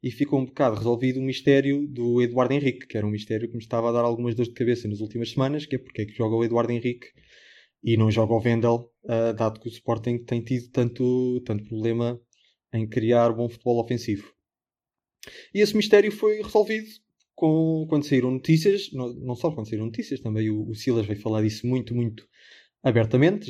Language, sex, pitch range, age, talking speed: Portuguese, male, 110-130 Hz, 20-39, 195 wpm